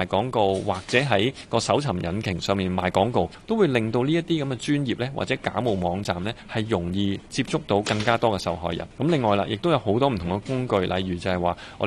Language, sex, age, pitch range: Chinese, male, 20-39, 95-125 Hz